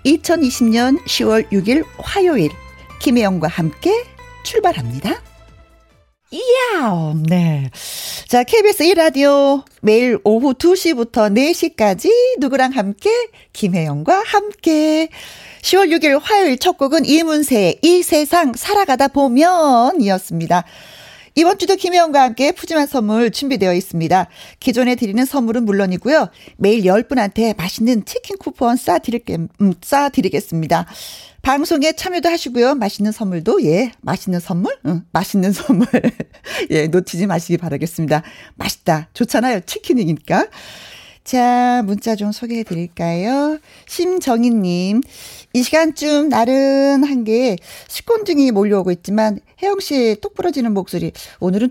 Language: Korean